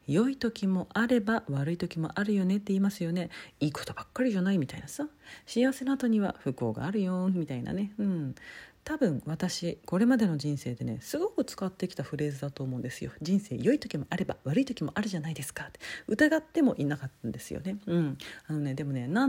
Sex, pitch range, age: female, 140-230 Hz, 40-59